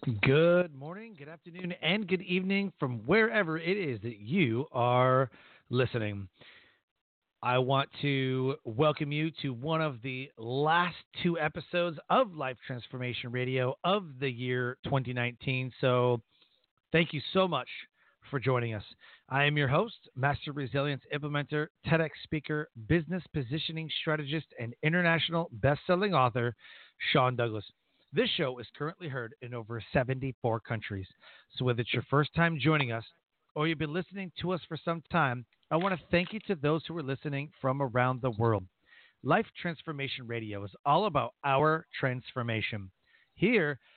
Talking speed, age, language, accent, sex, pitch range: 150 wpm, 40-59, English, American, male, 125-165 Hz